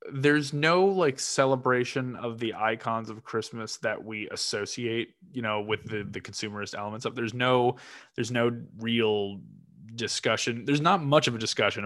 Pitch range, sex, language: 105-135 Hz, male, English